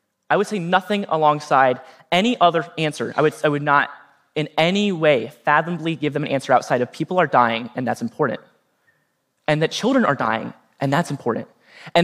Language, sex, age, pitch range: Arabic, male, 20-39, 145-200 Hz